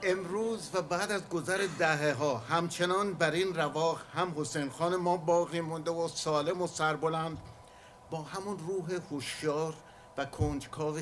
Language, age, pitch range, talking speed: English, 60-79, 125-175 Hz, 140 wpm